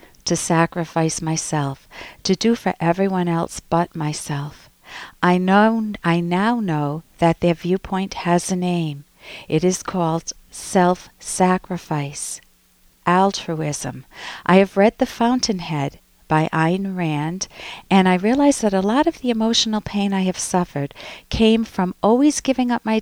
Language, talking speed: English, 140 wpm